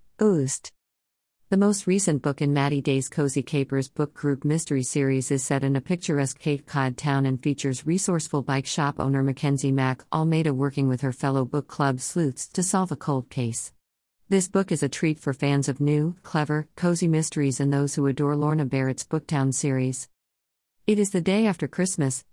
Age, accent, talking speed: 50-69, American, 185 wpm